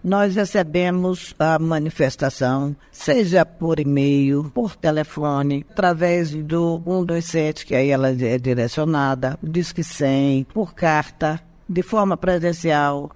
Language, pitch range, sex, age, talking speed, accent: Portuguese, 160-210 Hz, female, 50-69, 115 wpm, Brazilian